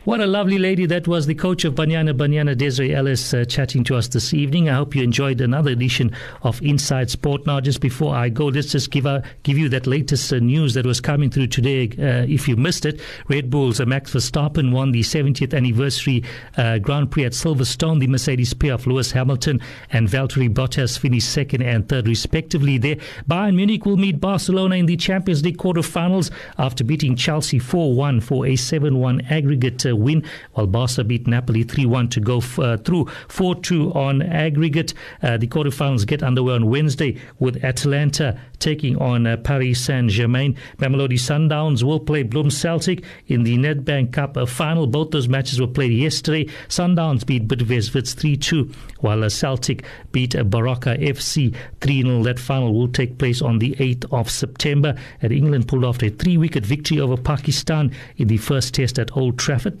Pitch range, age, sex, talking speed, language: 125-150 Hz, 50-69, male, 180 wpm, English